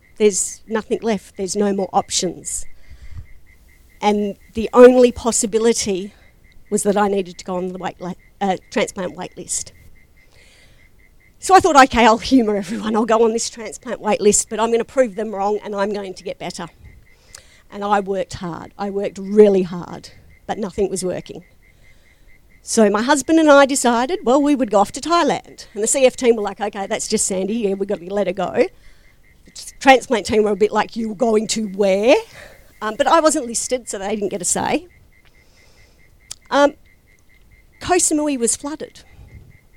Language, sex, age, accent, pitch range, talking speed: English, female, 50-69, Australian, 185-230 Hz, 180 wpm